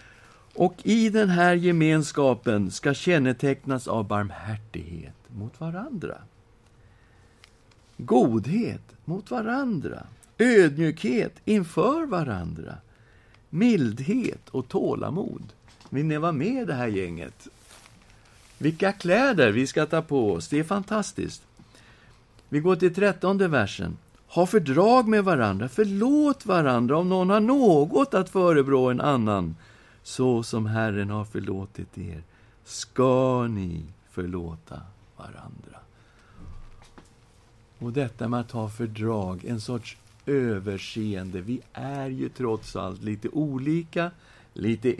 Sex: male